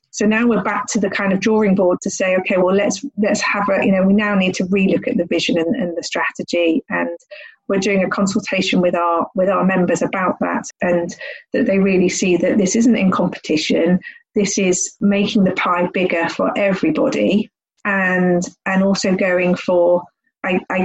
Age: 40-59